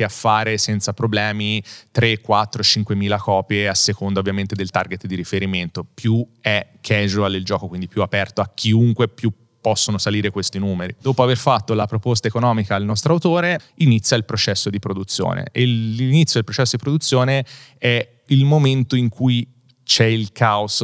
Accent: native